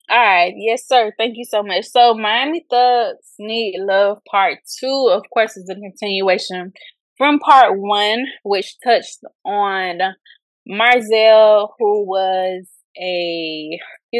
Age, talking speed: 20-39, 130 wpm